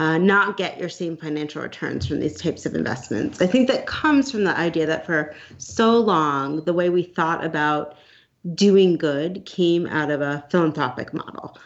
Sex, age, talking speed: female, 30-49, 185 wpm